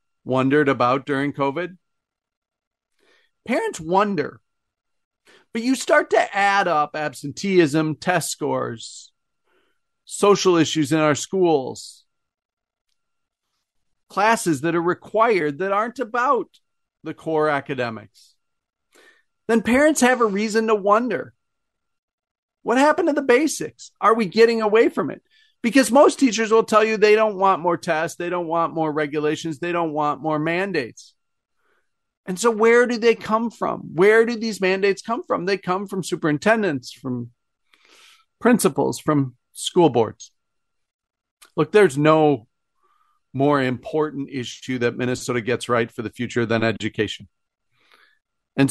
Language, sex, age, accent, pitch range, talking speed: English, male, 40-59, American, 140-220 Hz, 130 wpm